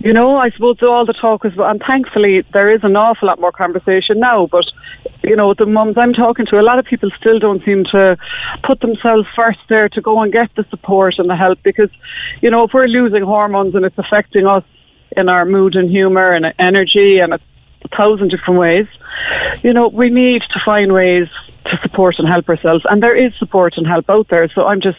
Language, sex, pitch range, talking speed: English, female, 185-230 Hz, 225 wpm